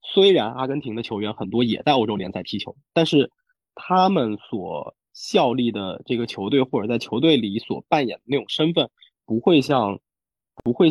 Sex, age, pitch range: male, 20-39, 115-155 Hz